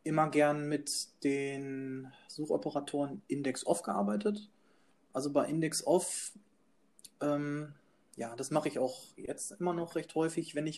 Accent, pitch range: German, 140-165 Hz